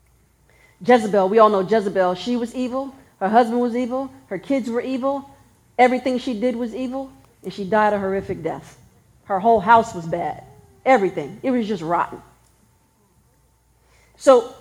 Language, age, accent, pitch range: English, 40-59, American, 225-290 Hz